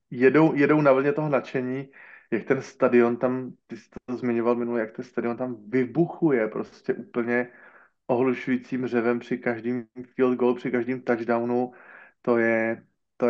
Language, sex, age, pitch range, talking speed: Slovak, male, 20-39, 115-125 Hz, 150 wpm